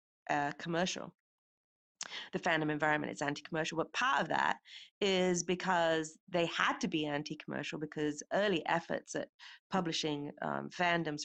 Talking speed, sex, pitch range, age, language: 135 wpm, female, 150-190 Hz, 30-49, English